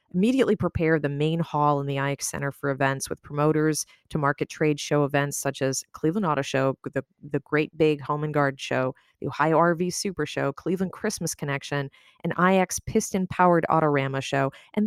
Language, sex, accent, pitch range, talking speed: English, female, American, 150-190 Hz, 185 wpm